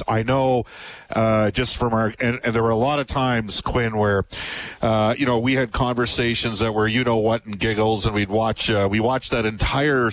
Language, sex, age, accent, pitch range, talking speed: English, male, 50-69, American, 110-135 Hz, 220 wpm